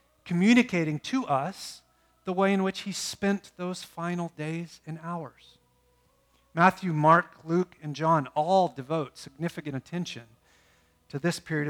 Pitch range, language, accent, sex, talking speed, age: 140-185 Hz, English, American, male, 135 wpm, 40-59